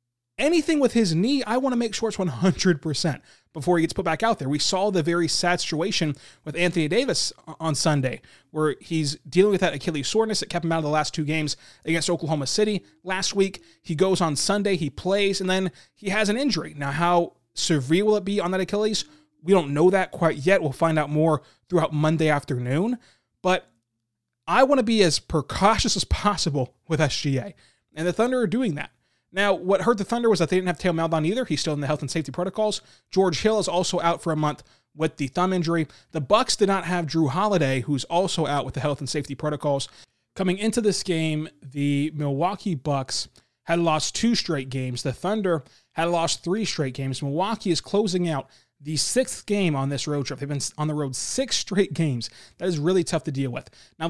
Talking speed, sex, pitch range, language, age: 215 wpm, male, 150-195 Hz, English, 20-39